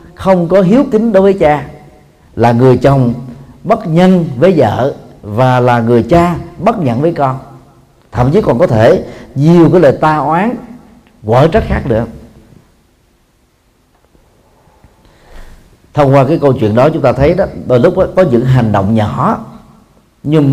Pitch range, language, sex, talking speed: 120-165 Hz, Vietnamese, male, 160 wpm